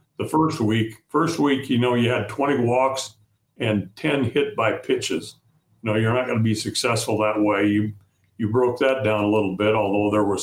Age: 60-79